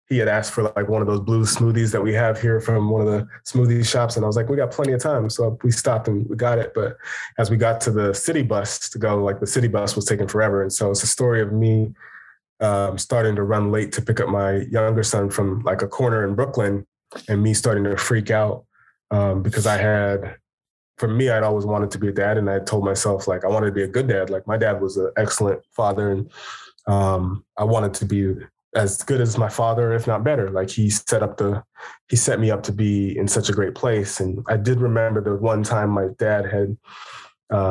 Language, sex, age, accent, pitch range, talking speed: English, male, 20-39, American, 100-115 Hz, 250 wpm